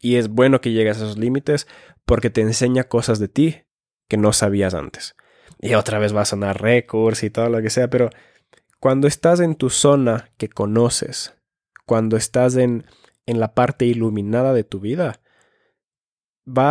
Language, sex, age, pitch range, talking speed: Spanish, male, 20-39, 105-125 Hz, 175 wpm